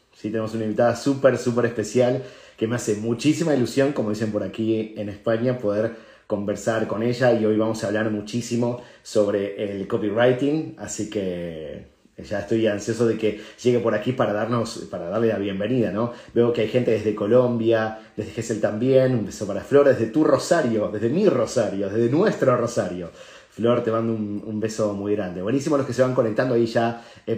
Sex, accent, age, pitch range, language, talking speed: male, Argentinian, 30-49, 105-125 Hz, Spanish, 190 wpm